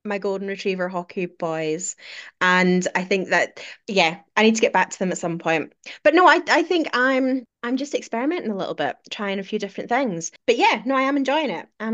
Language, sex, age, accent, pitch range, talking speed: English, female, 20-39, British, 180-235 Hz, 225 wpm